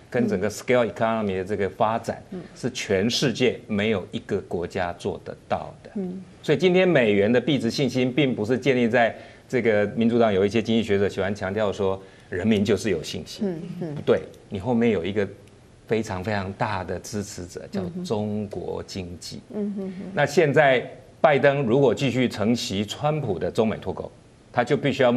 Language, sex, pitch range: Chinese, male, 105-170 Hz